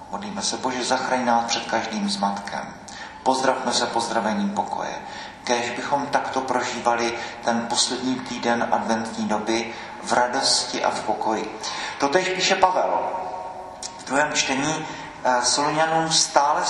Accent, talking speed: native, 120 wpm